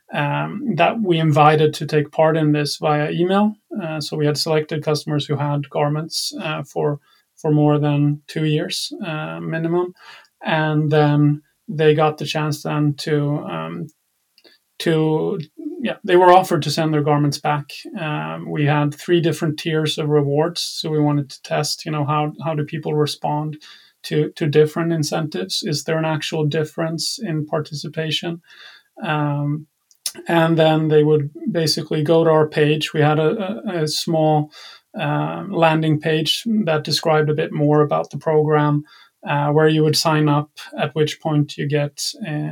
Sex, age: male, 30-49